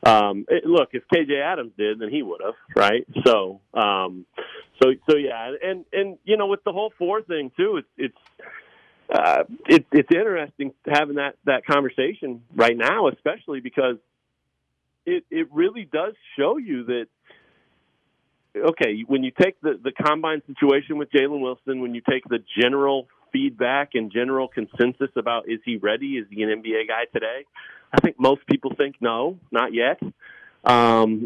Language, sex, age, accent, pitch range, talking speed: English, male, 40-59, American, 125-170 Hz, 165 wpm